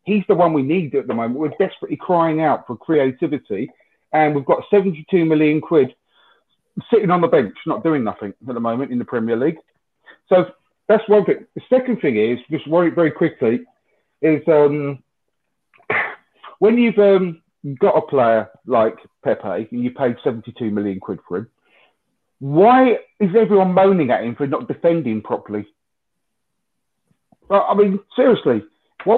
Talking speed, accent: 160 wpm, British